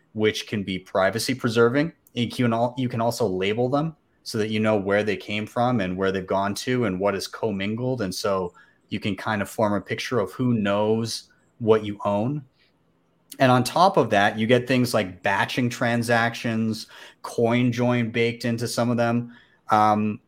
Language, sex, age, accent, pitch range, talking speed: English, male, 30-49, American, 105-125 Hz, 175 wpm